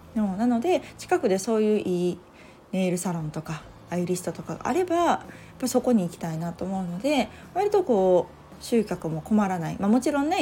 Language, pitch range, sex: Japanese, 180-230 Hz, female